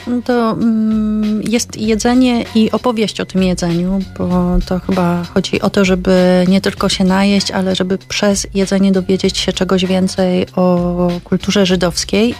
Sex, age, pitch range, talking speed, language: female, 30-49, 175-205 Hz, 150 wpm, Polish